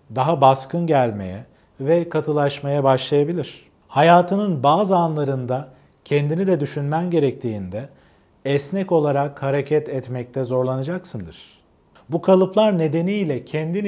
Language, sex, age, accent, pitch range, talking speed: Turkish, male, 40-59, native, 135-170 Hz, 95 wpm